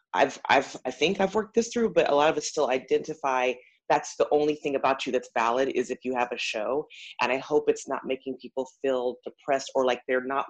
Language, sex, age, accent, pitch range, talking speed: English, female, 30-49, American, 130-165 Hz, 240 wpm